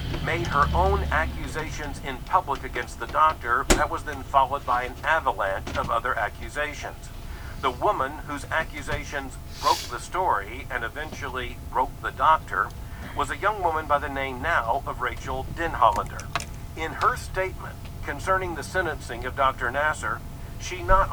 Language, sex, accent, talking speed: English, male, American, 150 wpm